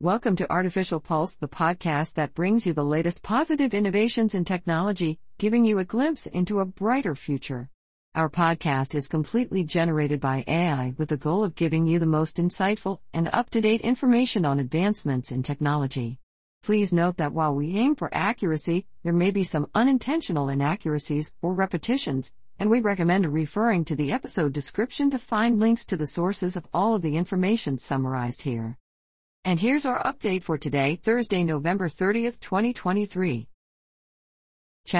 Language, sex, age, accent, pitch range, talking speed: English, female, 50-69, American, 145-205 Hz, 160 wpm